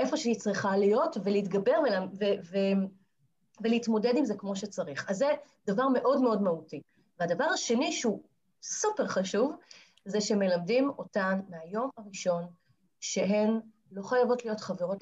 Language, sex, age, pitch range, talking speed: Hebrew, female, 30-49, 185-245 Hz, 135 wpm